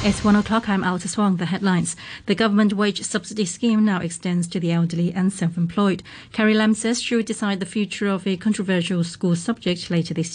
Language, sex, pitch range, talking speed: English, female, 170-220 Hz, 195 wpm